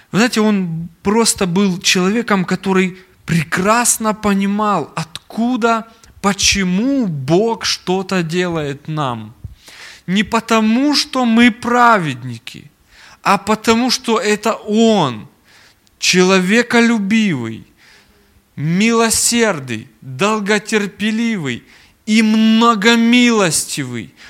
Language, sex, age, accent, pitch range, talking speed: Russian, male, 20-39, native, 170-230 Hz, 75 wpm